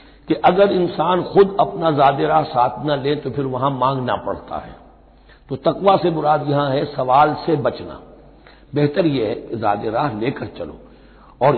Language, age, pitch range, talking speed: Hindi, 60-79, 125-165 Hz, 160 wpm